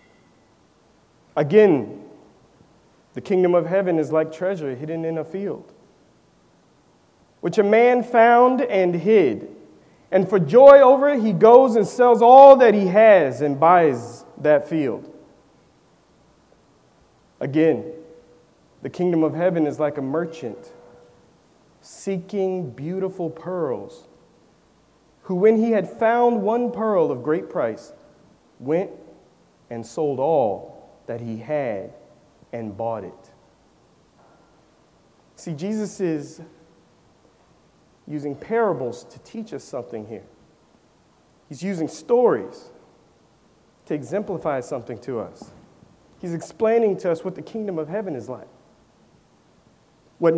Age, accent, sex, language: 30-49, American, male, English